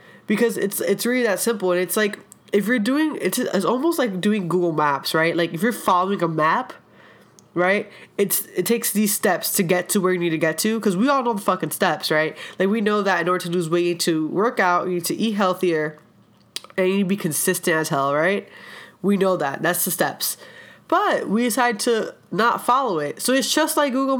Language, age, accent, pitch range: English, 20-39, American, 175-220 Hz